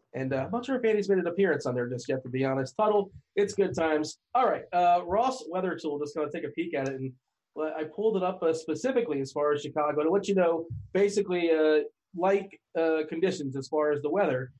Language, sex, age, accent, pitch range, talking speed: English, male, 30-49, American, 140-175 Hz, 260 wpm